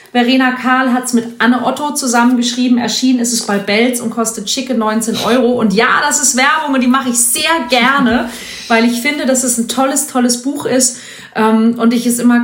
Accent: German